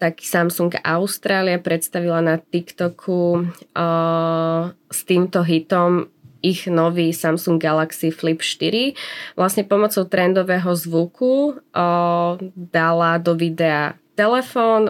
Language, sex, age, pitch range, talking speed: English, female, 20-39, 165-190 Hz, 100 wpm